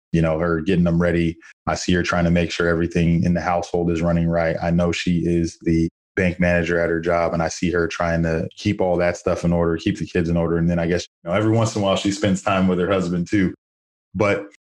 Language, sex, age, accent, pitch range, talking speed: English, male, 20-39, American, 85-95 Hz, 260 wpm